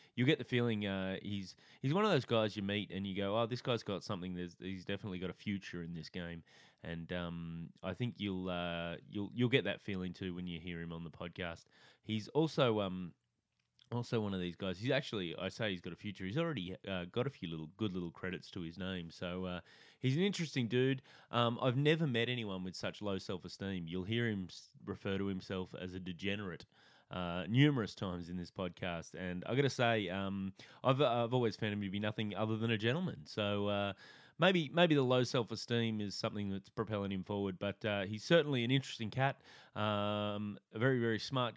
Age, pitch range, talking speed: 20-39, 95-120 Hz, 220 wpm